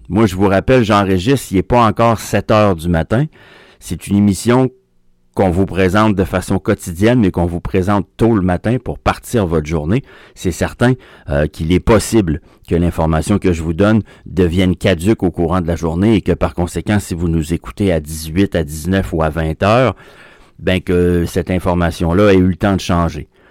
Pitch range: 90-110 Hz